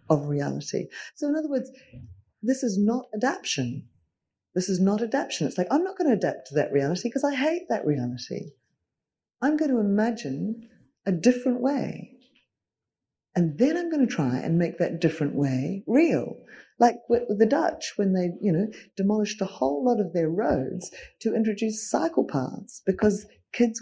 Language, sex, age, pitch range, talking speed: English, female, 40-59, 170-265 Hz, 175 wpm